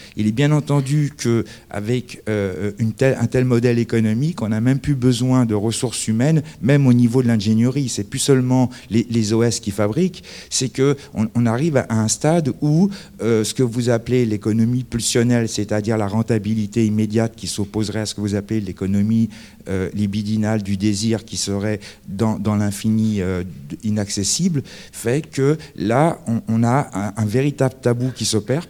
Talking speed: 165 wpm